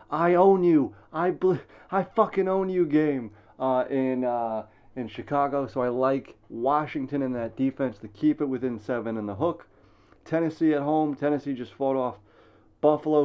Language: English